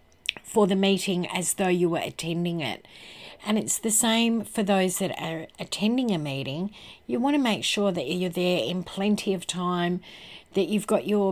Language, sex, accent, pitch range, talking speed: English, female, Australian, 170-205 Hz, 190 wpm